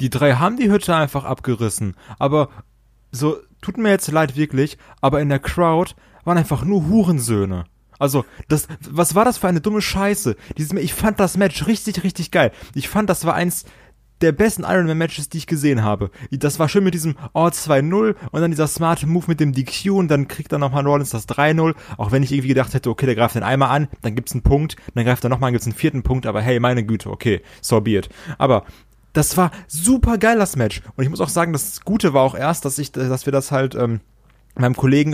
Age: 30-49